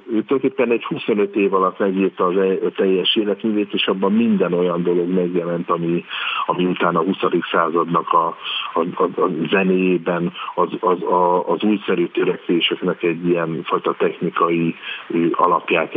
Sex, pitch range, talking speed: male, 90-105 Hz, 135 wpm